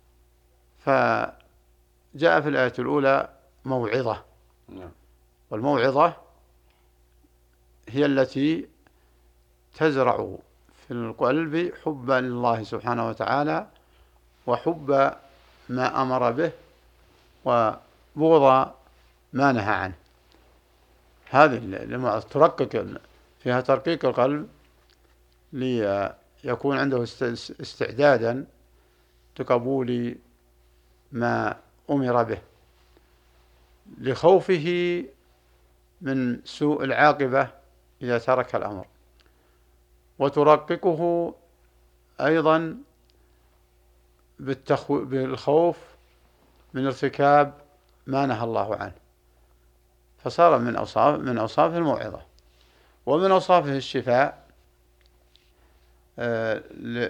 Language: Arabic